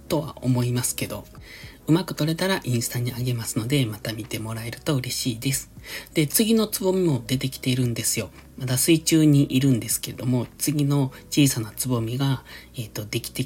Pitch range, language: 120-155 Hz, Japanese